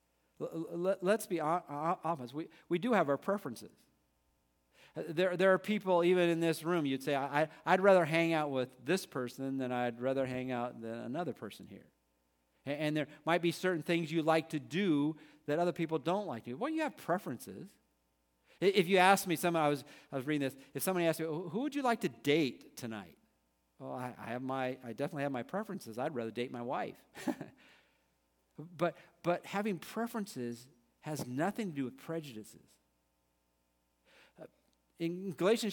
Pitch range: 125-175 Hz